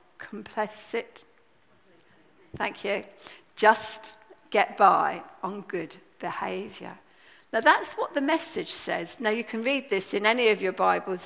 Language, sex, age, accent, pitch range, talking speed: English, female, 50-69, British, 220-315 Hz, 135 wpm